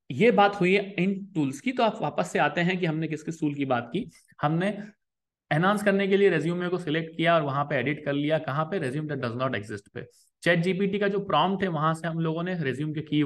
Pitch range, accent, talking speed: 135-195 Hz, native, 260 wpm